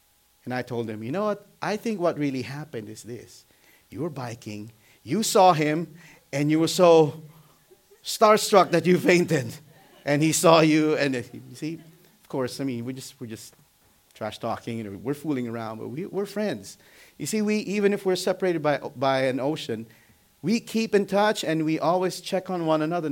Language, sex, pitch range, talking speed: English, male, 115-160 Hz, 200 wpm